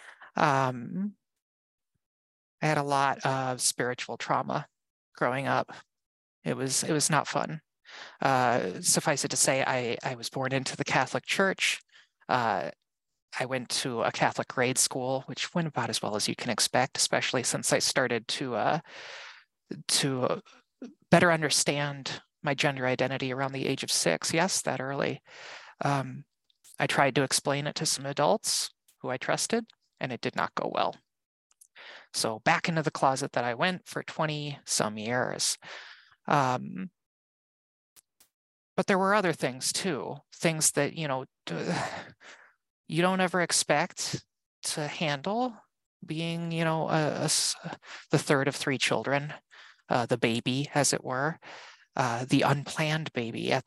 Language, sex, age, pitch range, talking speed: English, male, 30-49, 135-165 Hz, 150 wpm